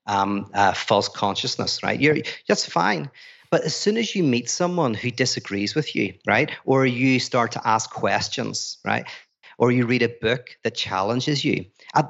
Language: English